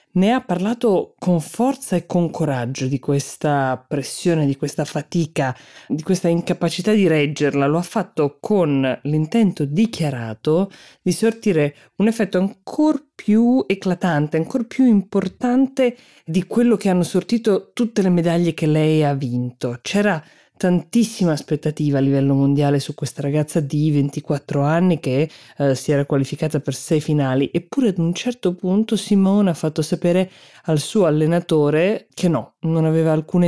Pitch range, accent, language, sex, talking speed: 145-185 Hz, native, Italian, female, 150 wpm